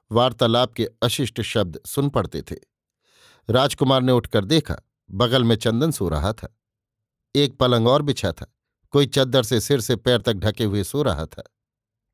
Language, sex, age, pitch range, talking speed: Hindi, male, 50-69, 110-140 Hz, 170 wpm